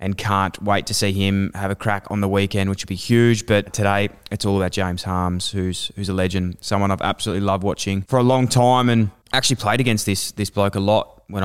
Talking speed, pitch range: 240 wpm, 95-110 Hz